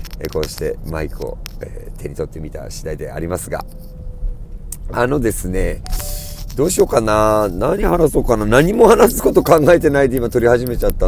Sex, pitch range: male, 85-115 Hz